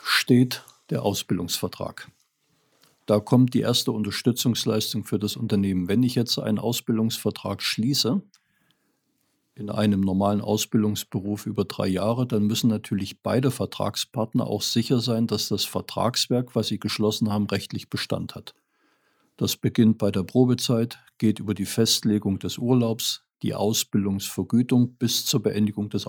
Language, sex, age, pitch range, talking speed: German, male, 50-69, 105-125 Hz, 135 wpm